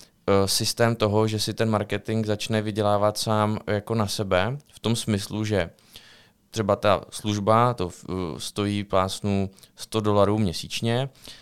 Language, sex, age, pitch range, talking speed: Czech, male, 20-39, 95-110 Hz, 130 wpm